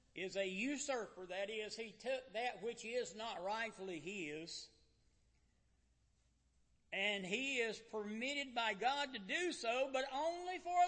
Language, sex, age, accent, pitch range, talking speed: English, male, 60-79, American, 165-215 Hz, 145 wpm